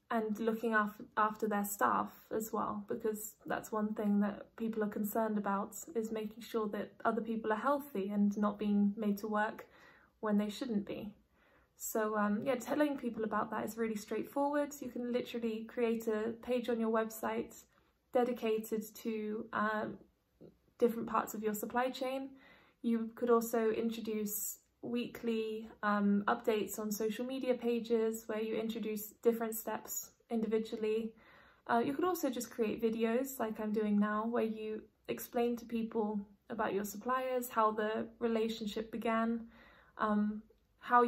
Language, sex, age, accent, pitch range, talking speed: English, female, 20-39, British, 215-235 Hz, 150 wpm